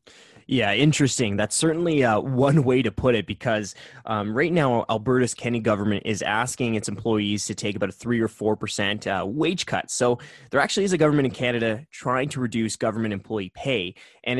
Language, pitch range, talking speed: English, 105-130 Hz, 190 wpm